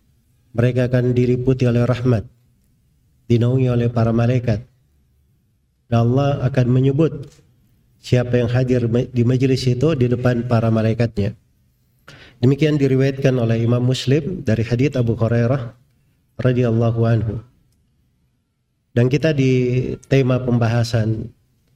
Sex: male